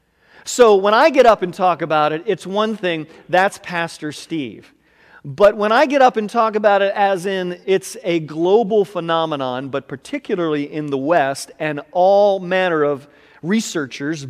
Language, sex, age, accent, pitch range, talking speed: English, male, 40-59, American, 165-260 Hz, 170 wpm